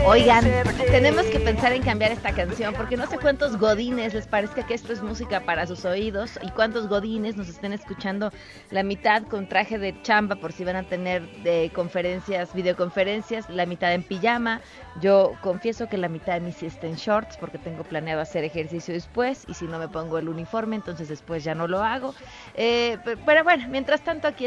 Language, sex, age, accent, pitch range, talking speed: Spanish, female, 30-49, Mexican, 170-210 Hz, 200 wpm